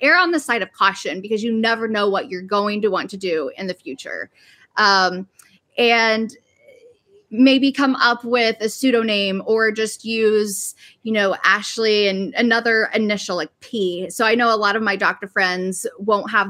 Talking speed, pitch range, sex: 180 wpm, 195-230 Hz, female